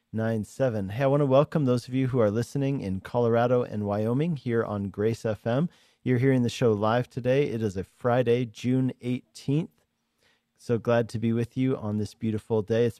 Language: English